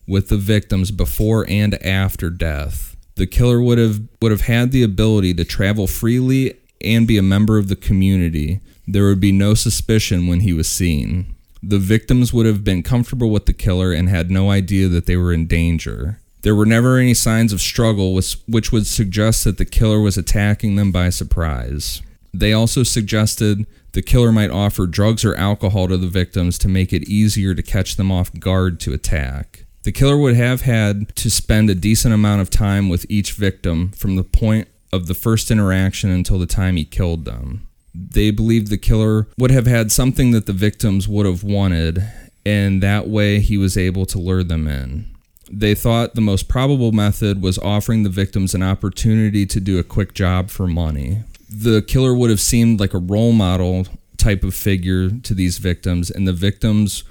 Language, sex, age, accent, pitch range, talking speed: English, male, 30-49, American, 90-110 Hz, 195 wpm